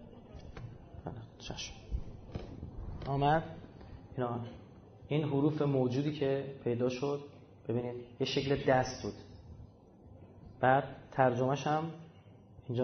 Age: 30-49